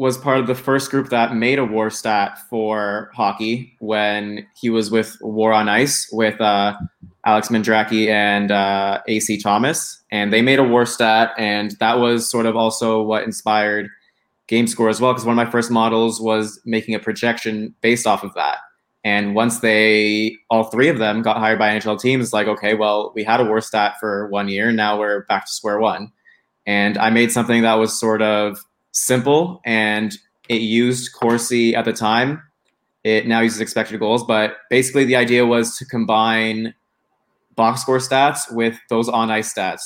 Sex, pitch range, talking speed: male, 105-120 Hz, 190 wpm